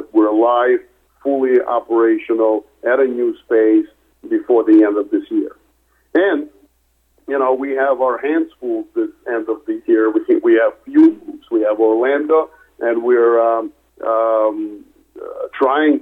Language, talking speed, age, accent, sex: English, 155 wpm, 50-69, American, male